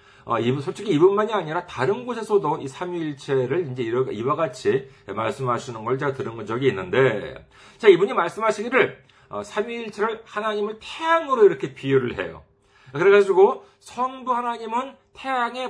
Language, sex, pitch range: Korean, male, 165-245 Hz